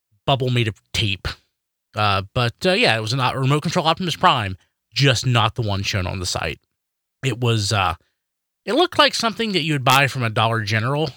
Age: 30-49